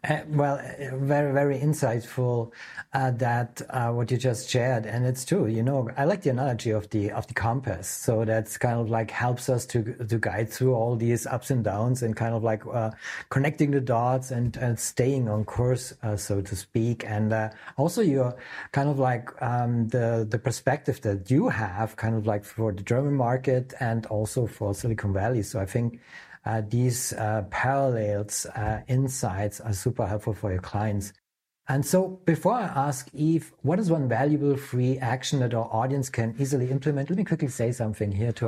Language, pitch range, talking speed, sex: English, 110-135 Hz, 195 wpm, male